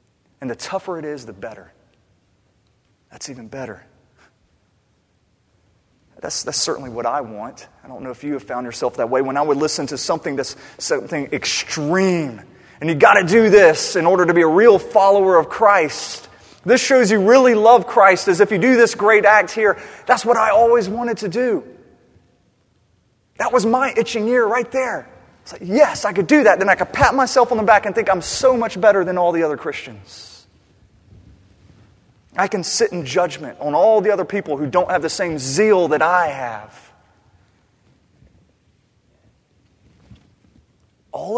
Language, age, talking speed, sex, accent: English, 30-49, 175 wpm, male, American